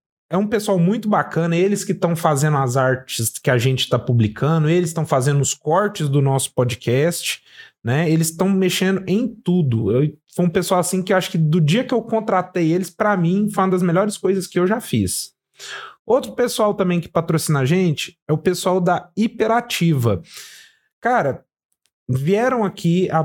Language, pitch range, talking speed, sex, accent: Portuguese, 150-200 Hz, 185 wpm, male, Brazilian